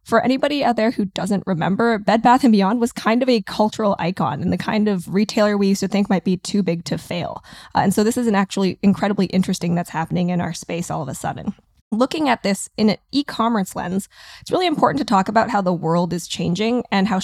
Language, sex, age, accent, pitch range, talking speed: English, female, 20-39, American, 185-225 Hz, 240 wpm